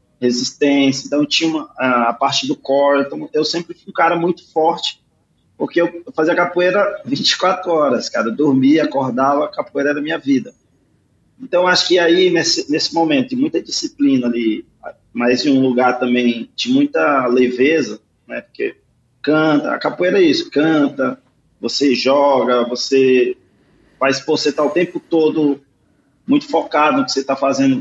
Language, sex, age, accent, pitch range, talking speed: Portuguese, male, 20-39, Brazilian, 135-200 Hz, 165 wpm